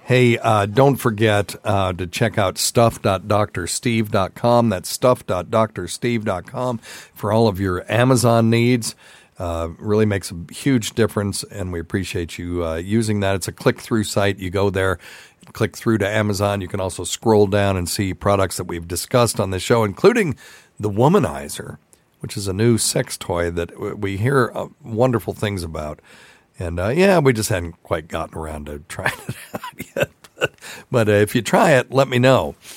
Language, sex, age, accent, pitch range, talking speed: English, male, 50-69, American, 90-115 Hz, 175 wpm